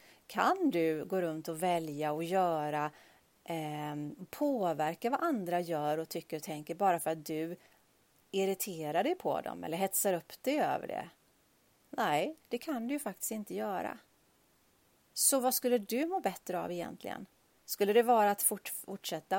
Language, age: Swedish, 30-49